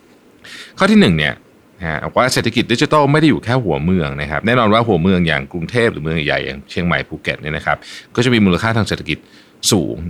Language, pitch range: Thai, 85-115 Hz